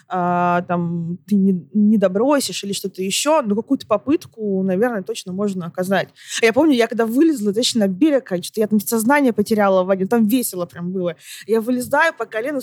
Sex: female